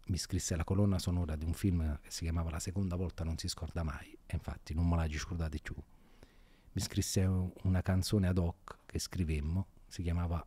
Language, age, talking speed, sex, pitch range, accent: Italian, 40-59, 200 wpm, male, 85-95 Hz, native